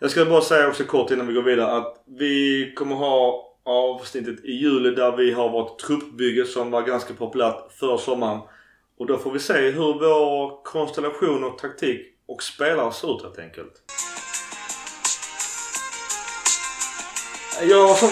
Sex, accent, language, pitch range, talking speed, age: male, native, Swedish, 125-165 Hz, 145 wpm, 30-49